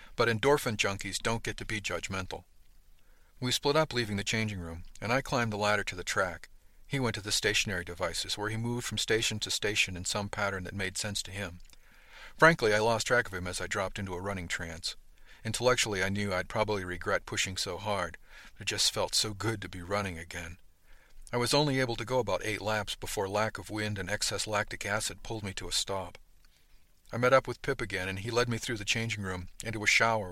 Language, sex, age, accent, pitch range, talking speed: English, male, 50-69, American, 95-120 Hz, 225 wpm